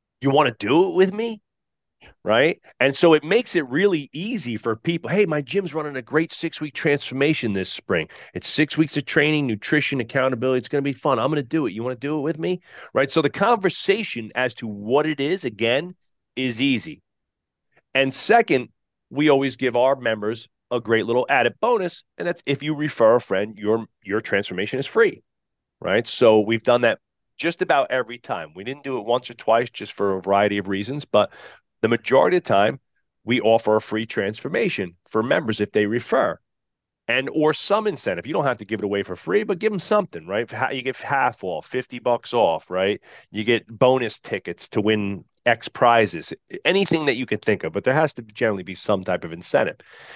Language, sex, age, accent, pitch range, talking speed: English, male, 40-59, American, 110-155 Hz, 210 wpm